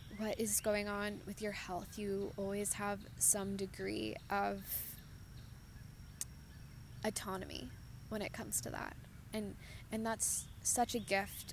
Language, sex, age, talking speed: English, female, 20-39, 130 wpm